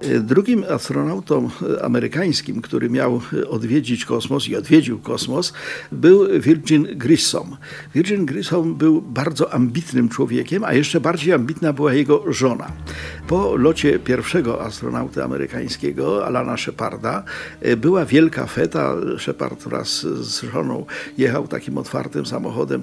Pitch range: 125-165 Hz